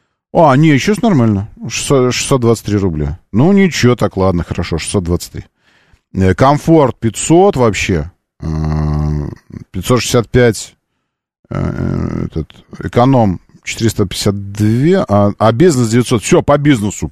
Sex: male